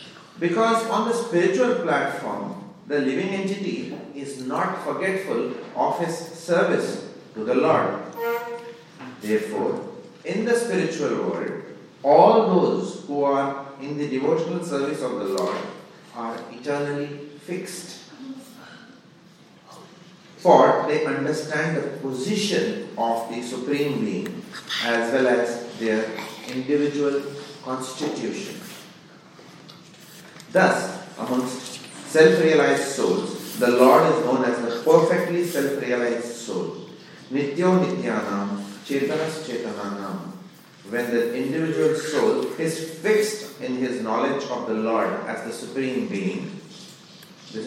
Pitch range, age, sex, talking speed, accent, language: 125-185 Hz, 40-59, male, 105 wpm, Indian, English